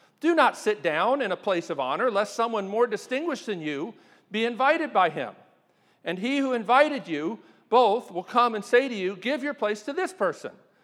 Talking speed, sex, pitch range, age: 205 wpm, male, 185-265 Hz, 50-69